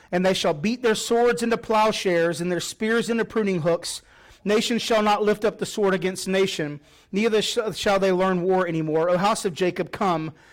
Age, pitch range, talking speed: 30-49, 195-245 Hz, 195 wpm